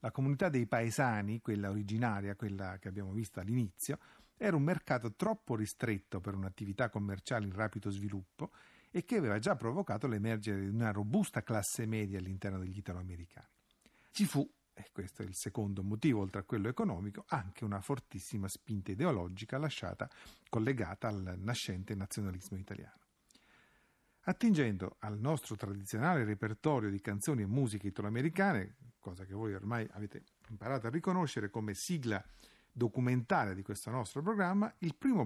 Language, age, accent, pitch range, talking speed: Italian, 50-69, native, 100-145 Hz, 145 wpm